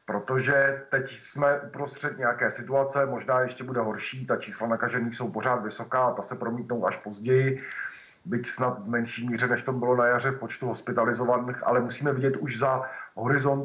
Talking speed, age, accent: 170 wpm, 50-69, native